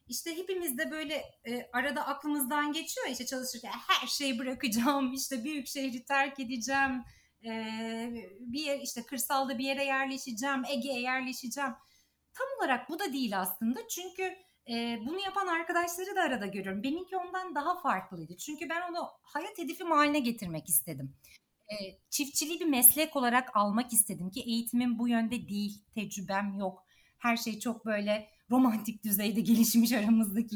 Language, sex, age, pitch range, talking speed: Turkish, female, 30-49, 225-295 Hz, 145 wpm